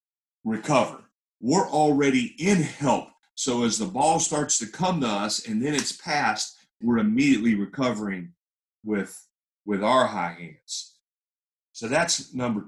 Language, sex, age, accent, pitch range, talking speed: English, male, 40-59, American, 95-140 Hz, 135 wpm